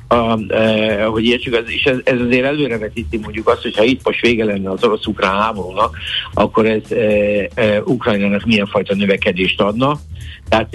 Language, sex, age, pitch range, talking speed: Hungarian, male, 60-79, 95-115 Hz, 160 wpm